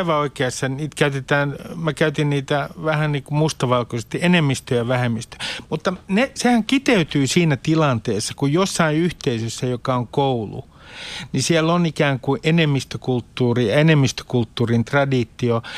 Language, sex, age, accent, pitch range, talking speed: Finnish, male, 50-69, native, 125-165 Hz, 120 wpm